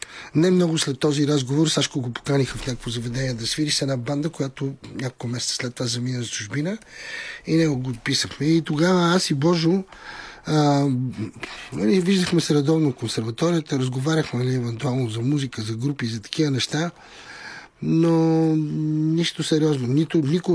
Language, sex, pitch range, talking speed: Bulgarian, male, 125-155 Hz, 150 wpm